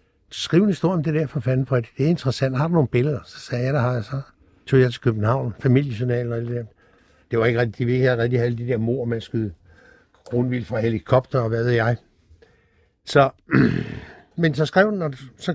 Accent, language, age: native, Danish, 60-79